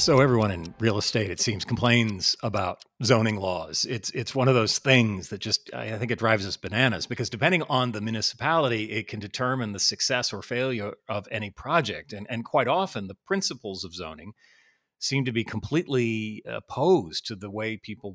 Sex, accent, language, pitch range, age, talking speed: male, American, English, 100-130 Hz, 40-59, 190 wpm